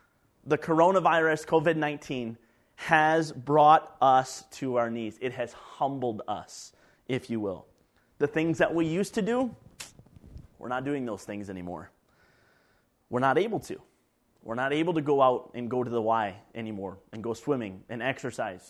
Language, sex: English, male